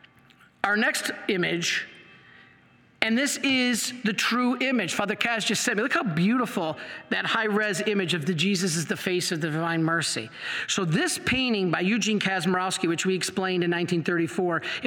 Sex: male